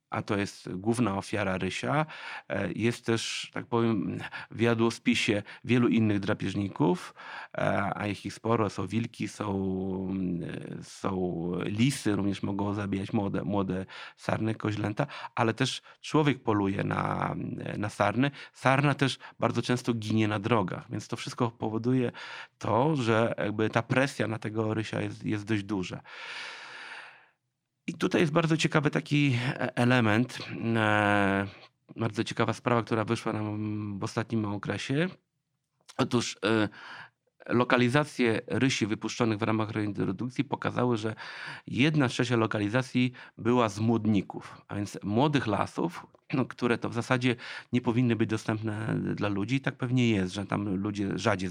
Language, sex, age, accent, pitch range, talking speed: Polish, male, 30-49, native, 105-125 Hz, 130 wpm